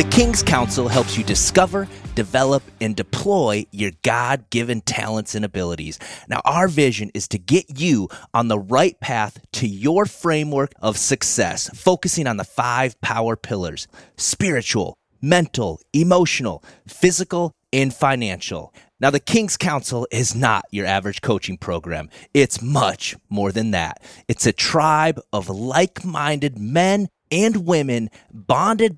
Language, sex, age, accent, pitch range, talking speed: English, male, 30-49, American, 105-170 Hz, 140 wpm